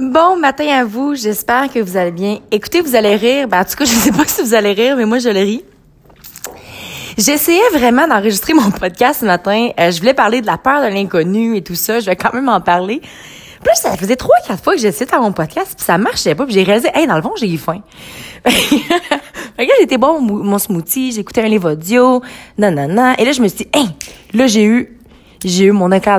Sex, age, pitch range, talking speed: female, 20-39, 195-265 Hz, 245 wpm